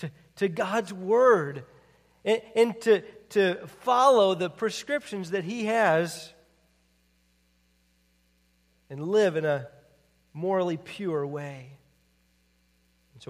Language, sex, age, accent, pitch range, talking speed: English, male, 40-59, American, 145-200 Hz, 95 wpm